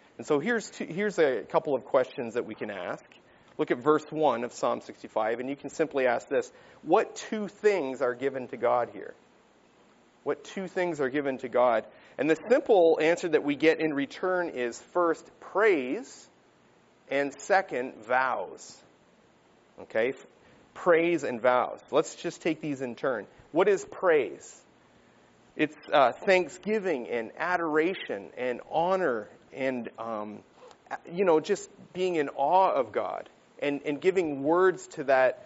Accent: American